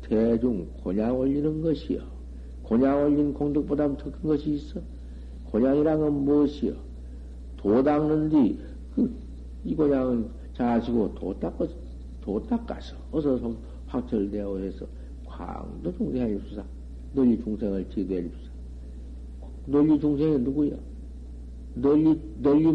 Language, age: Korean, 60-79